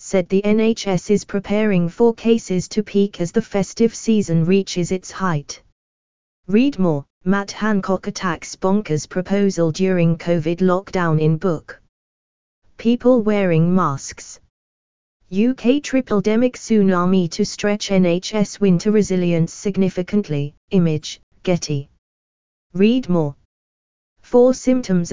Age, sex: 20-39, female